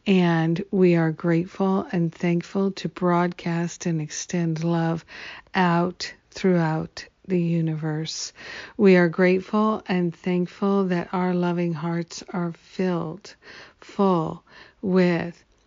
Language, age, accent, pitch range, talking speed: English, 50-69, American, 165-185 Hz, 105 wpm